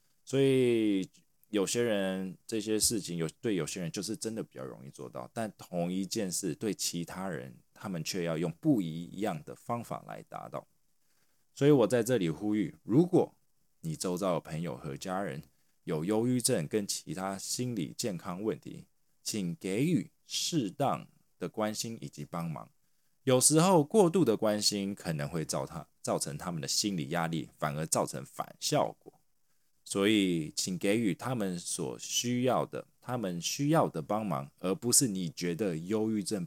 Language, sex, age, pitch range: Chinese, male, 20-39, 80-120 Hz